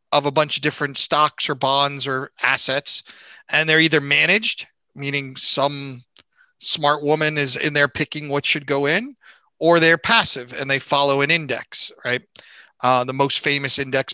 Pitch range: 135-160 Hz